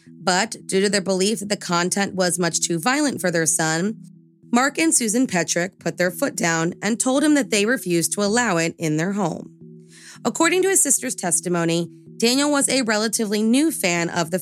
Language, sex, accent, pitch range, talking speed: English, female, American, 170-240 Hz, 200 wpm